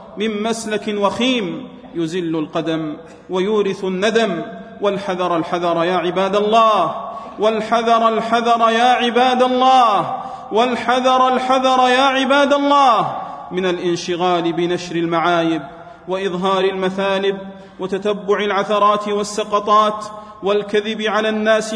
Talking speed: 95 wpm